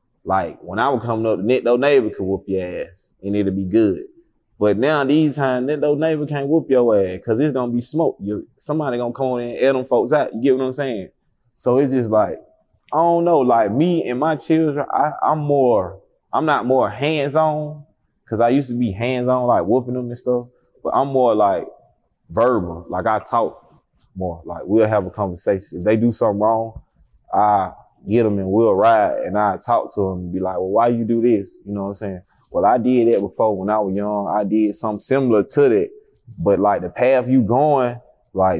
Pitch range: 110-150 Hz